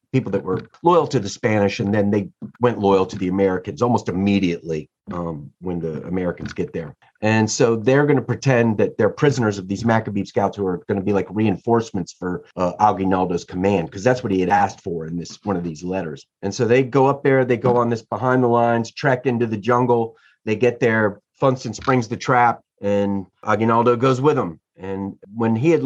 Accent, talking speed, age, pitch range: American, 215 wpm, 30-49, 100-125 Hz